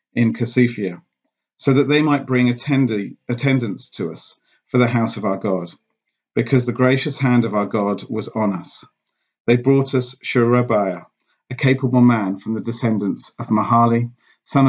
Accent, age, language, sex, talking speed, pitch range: British, 40-59, English, male, 165 wpm, 105-125 Hz